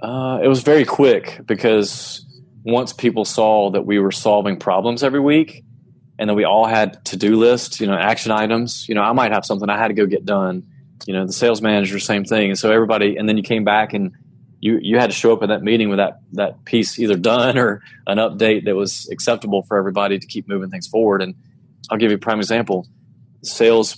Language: English